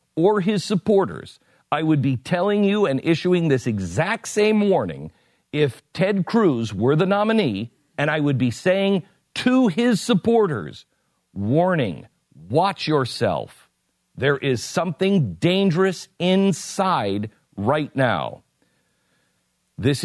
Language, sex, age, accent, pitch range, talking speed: English, male, 50-69, American, 105-175 Hz, 115 wpm